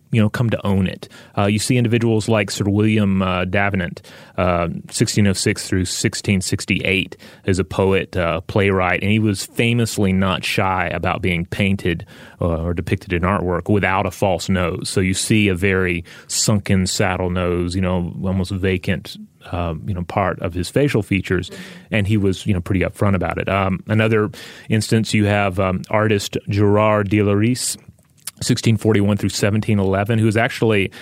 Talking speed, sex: 175 wpm, male